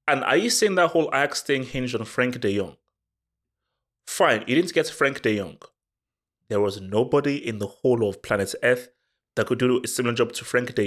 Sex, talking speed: male, 210 wpm